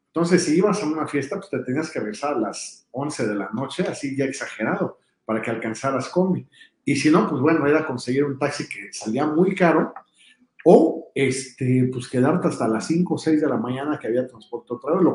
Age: 50-69